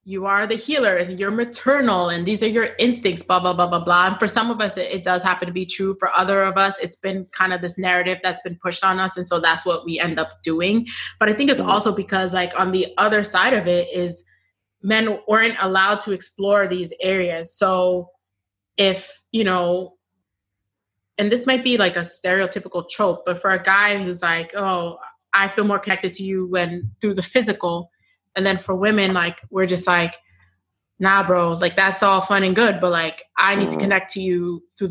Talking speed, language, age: 220 wpm, English, 20-39